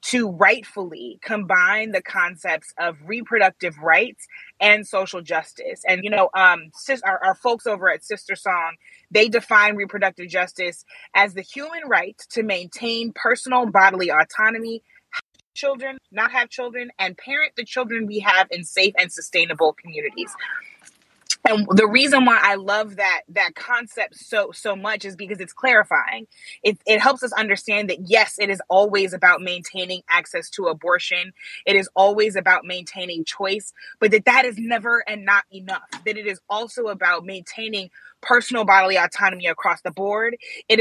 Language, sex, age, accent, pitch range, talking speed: English, female, 20-39, American, 190-225 Hz, 160 wpm